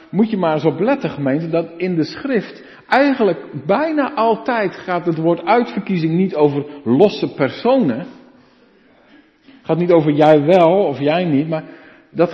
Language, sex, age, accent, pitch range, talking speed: Dutch, male, 50-69, Dutch, 160-235 Hz, 160 wpm